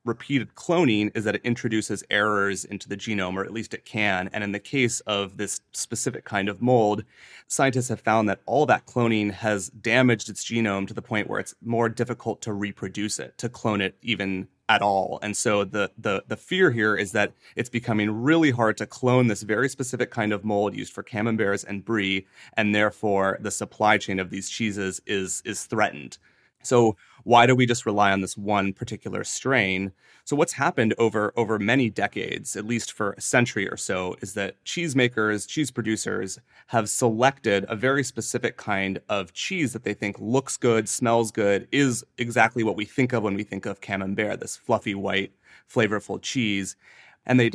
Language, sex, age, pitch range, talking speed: English, male, 30-49, 100-120 Hz, 190 wpm